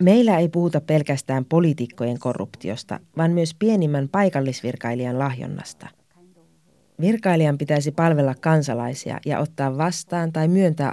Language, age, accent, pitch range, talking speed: Finnish, 30-49, native, 130-170 Hz, 110 wpm